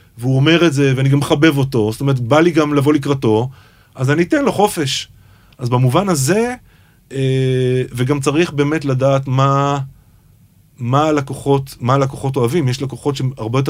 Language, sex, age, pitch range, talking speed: English, male, 30-49, 120-160 Hz, 145 wpm